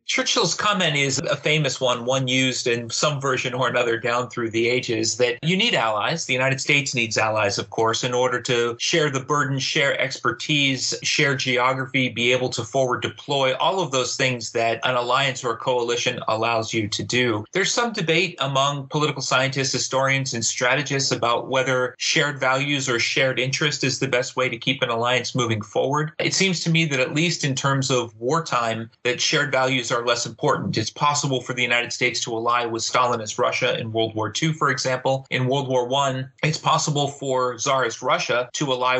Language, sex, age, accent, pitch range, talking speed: English, male, 30-49, American, 120-140 Hz, 195 wpm